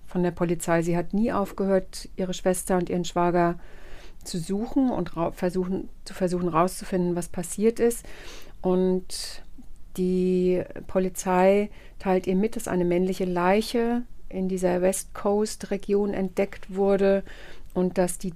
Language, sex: German, female